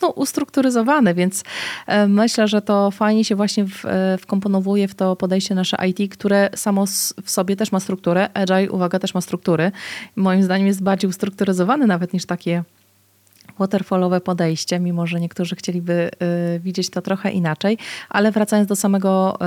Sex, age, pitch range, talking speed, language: female, 30-49, 185-210 Hz, 150 wpm, Polish